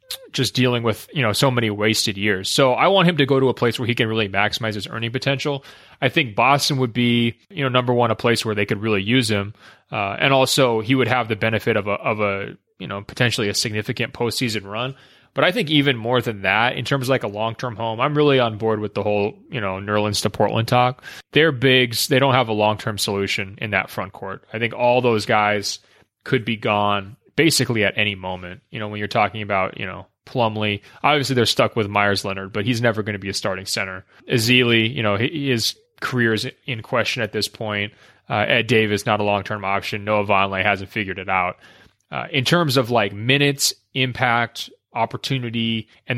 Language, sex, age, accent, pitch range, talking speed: English, male, 20-39, American, 105-125 Hz, 220 wpm